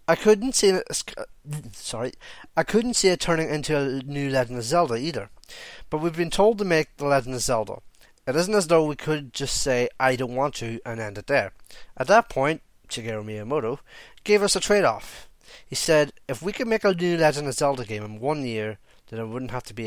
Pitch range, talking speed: 120-155 Hz, 220 wpm